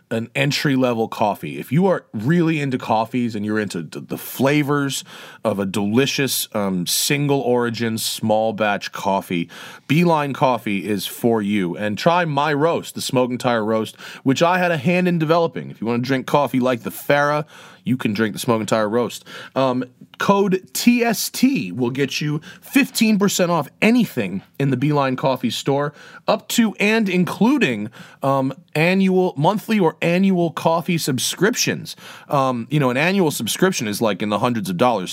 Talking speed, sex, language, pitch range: 170 wpm, male, English, 120-175 Hz